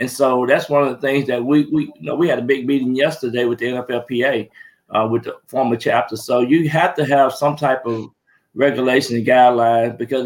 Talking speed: 220 wpm